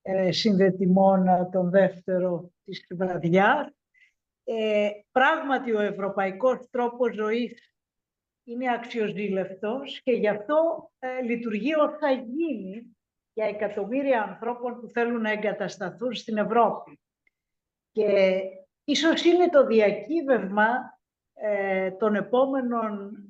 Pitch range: 195-255 Hz